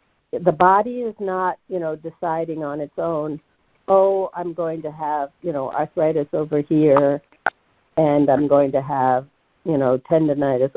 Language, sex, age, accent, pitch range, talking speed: English, female, 50-69, American, 150-195 Hz, 155 wpm